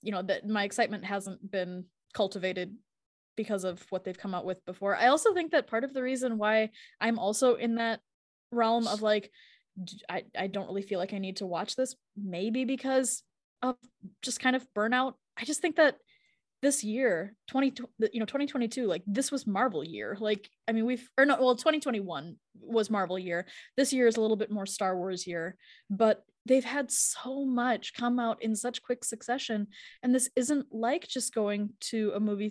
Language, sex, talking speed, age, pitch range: English, female, 195 wpm, 10-29, 195-245 Hz